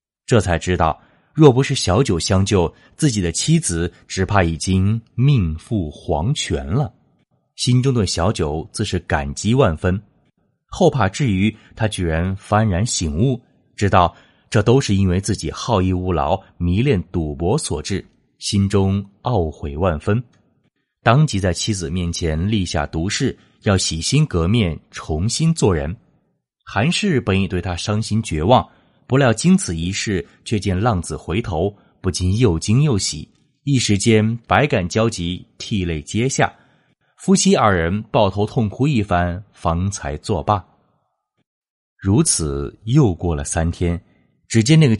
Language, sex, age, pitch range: Chinese, male, 20-39, 85-125 Hz